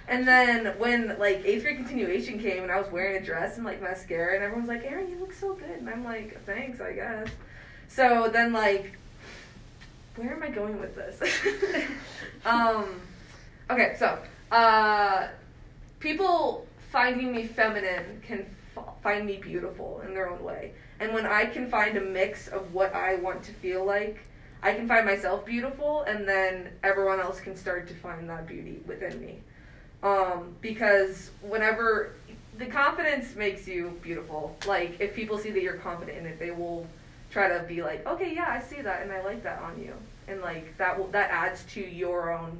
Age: 20-39